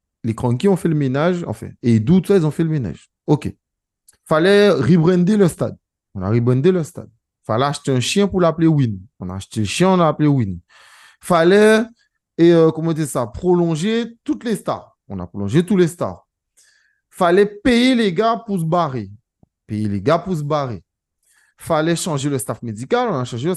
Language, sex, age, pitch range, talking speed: French, male, 30-49, 115-175 Hz, 210 wpm